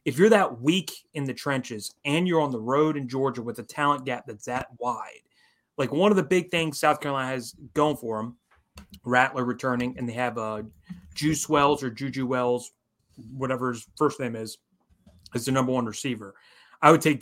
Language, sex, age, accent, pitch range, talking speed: English, male, 30-49, American, 120-150 Hz, 195 wpm